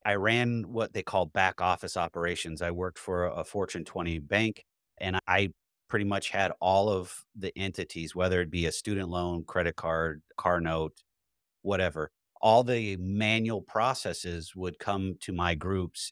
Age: 30-49